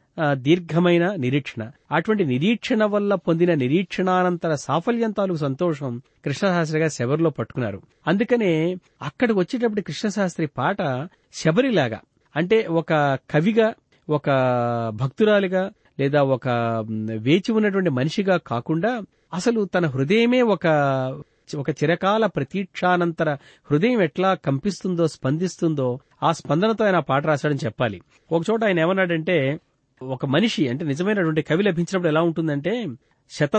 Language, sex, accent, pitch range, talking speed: Telugu, male, native, 135-190 Hz, 105 wpm